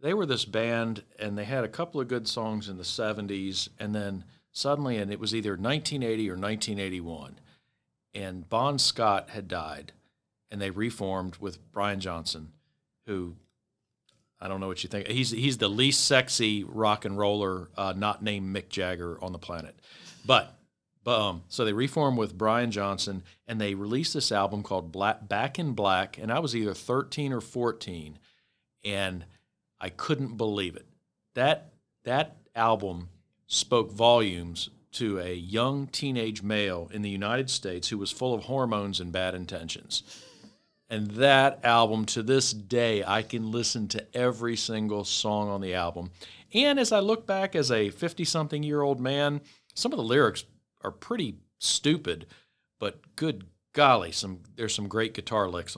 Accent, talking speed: American, 165 wpm